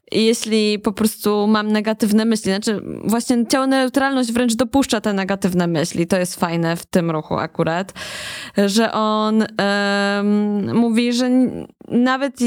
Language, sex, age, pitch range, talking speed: Polish, female, 20-39, 210-245 Hz, 130 wpm